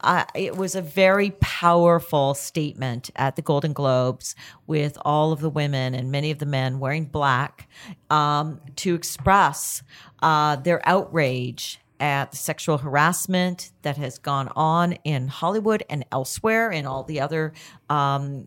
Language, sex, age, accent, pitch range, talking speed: English, female, 50-69, American, 140-180 Hz, 145 wpm